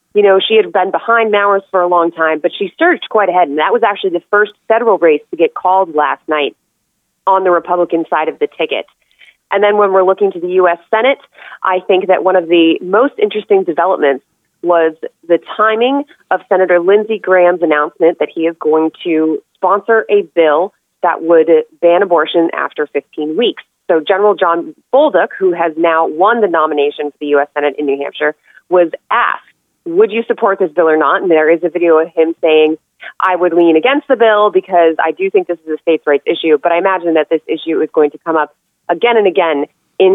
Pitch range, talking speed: 165-215 Hz, 210 wpm